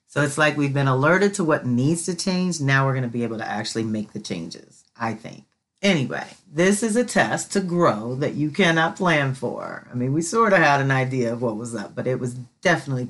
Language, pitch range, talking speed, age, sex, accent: English, 115-160 Hz, 240 wpm, 40-59, female, American